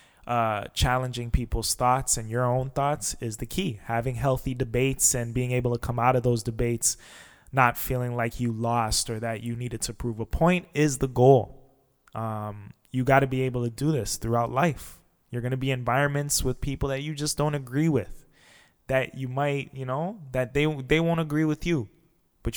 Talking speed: 200 wpm